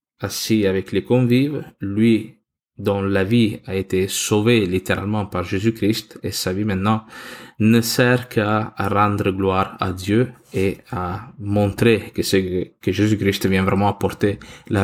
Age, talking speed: 20-39, 150 wpm